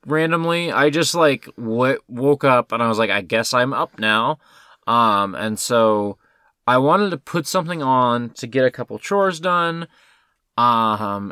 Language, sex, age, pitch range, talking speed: English, male, 20-39, 115-165 Hz, 170 wpm